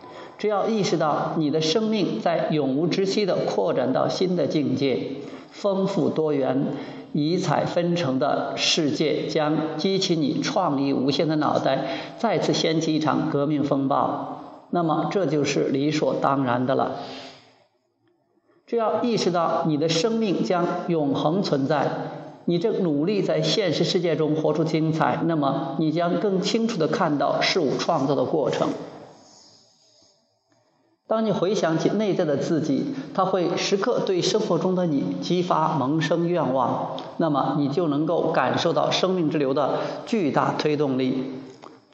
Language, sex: Chinese, male